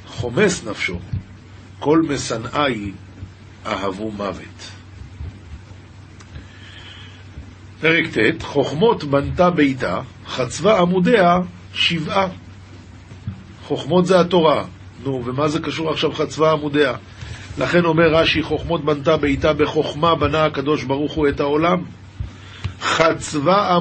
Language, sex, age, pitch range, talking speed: Hebrew, male, 50-69, 105-165 Hz, 95 wpm